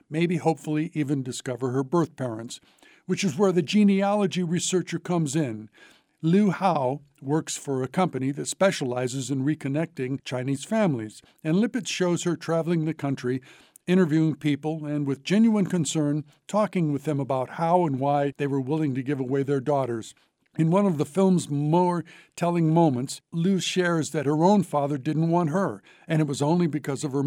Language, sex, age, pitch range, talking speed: English, male, 60-79, 140-175 Hz, 175 wpm